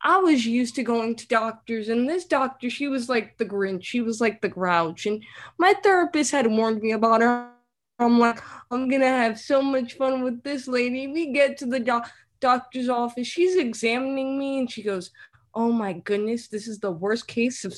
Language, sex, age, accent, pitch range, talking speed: English, female, 20-39, American, 230-285 Hz, 205 wpm